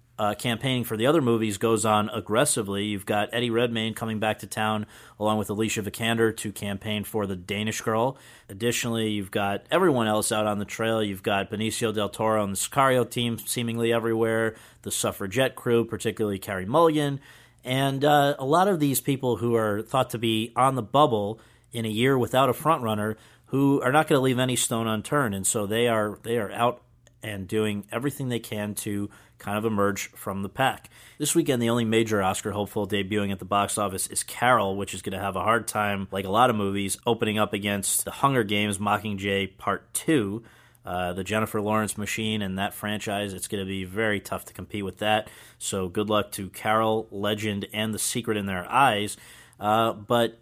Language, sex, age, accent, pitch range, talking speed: English, male, 40-59, American, 105-120 Hz, 200 wpm